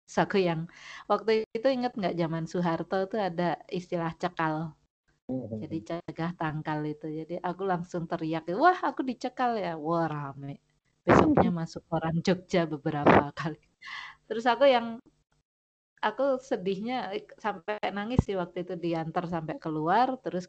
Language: Indonesian